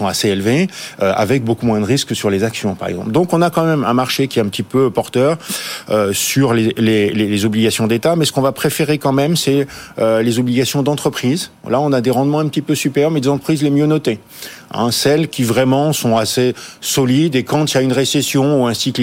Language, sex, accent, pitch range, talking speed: French, male, French, 115-140 Hz, 245 wpm